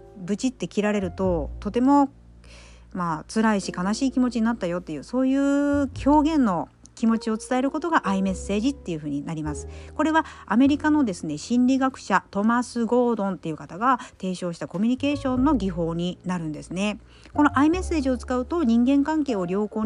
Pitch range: 185-255 Hz